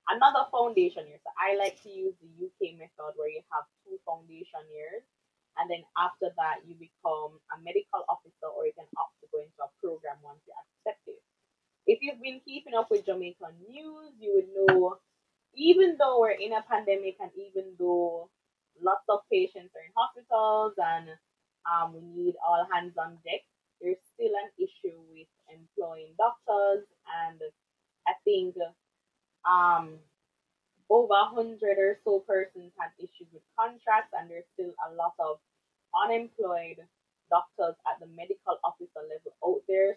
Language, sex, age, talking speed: English, female, 20-39, 160 wpm